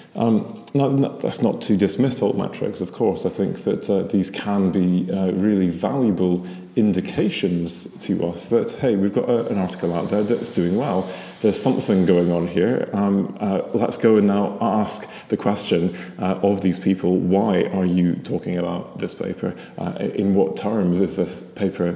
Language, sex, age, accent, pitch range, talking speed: English, male, 30-49, British, 90-105 Hz, 180 wpm